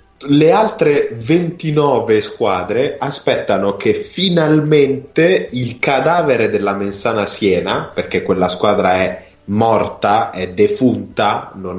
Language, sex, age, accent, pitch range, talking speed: Italian, male, 20-39, native, 95-145 Hz, 100 wpm